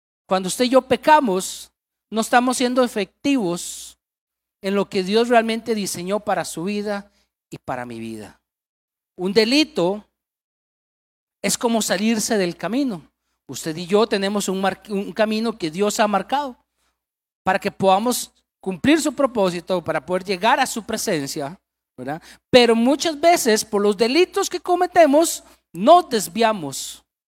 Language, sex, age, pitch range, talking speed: Spanish, male, 40-59, 185-265 Hz, 140 wpm